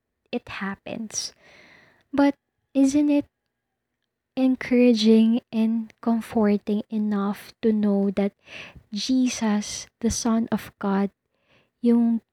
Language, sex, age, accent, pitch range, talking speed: Filipino, female, 20-39, native, 210-240 Hz, 90 wpm